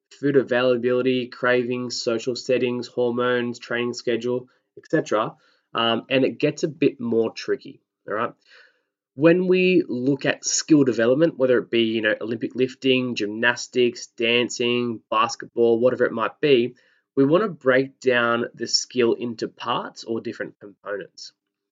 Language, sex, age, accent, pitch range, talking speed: English, male, 20-39, Australian, 120-140 Hz, 140 wpm